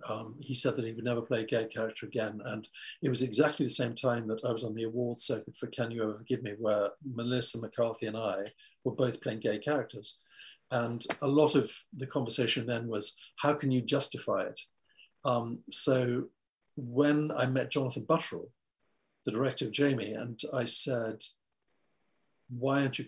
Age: 50-69